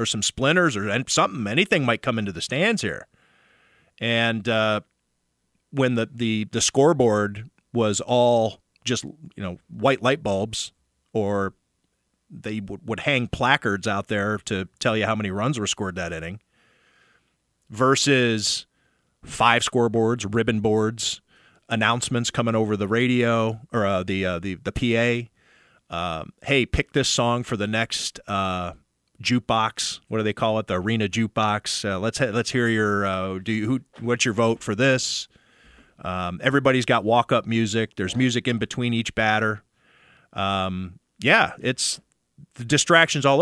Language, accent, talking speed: English, American, 160 wpm